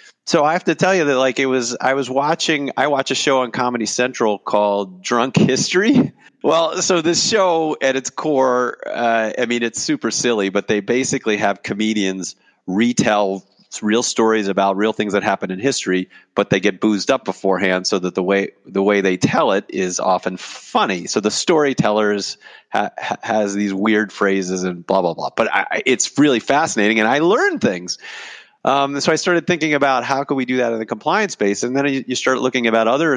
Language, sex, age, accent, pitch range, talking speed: English, male, 40-59, American, 100-135 Hz, 210 wpm